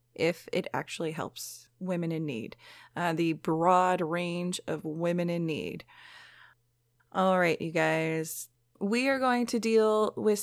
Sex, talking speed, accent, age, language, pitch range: female, 145 wpm, American, 20-39, English, 165-210 Hz